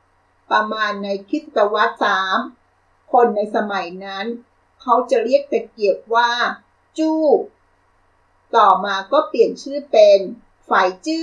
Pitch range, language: 200-285 Hz, Thai